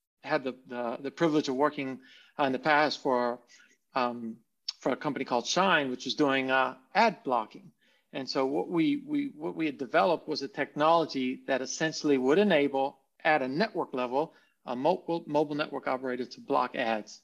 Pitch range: 130-175 Hz